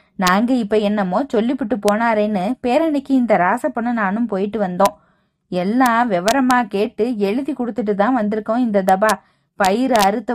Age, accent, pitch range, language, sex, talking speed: 20-39, native, 205-285 Hz, Tamil, female, 120 wpm